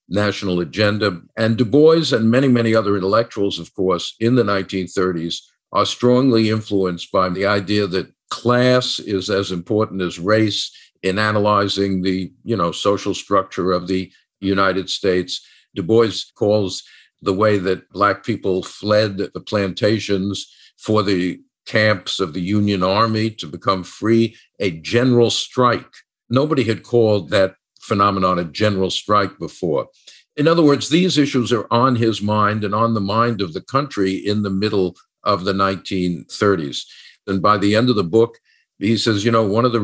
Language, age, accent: English, 50-69, American